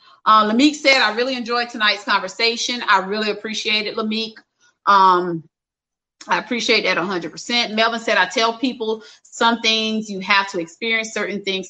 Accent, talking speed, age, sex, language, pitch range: American, 160 wpm, 30-49, female, English, 200-265 Hz